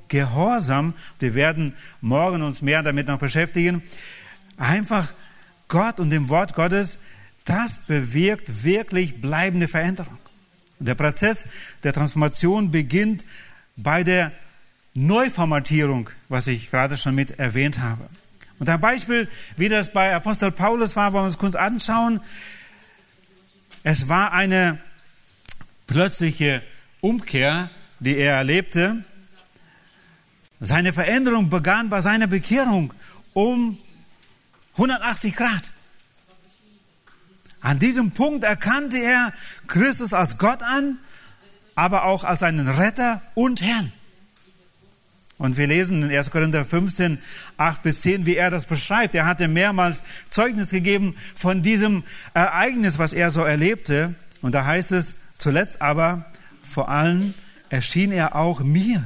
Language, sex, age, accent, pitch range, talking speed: German, male, 40-59, German, 150-200 Hz, 120 wpm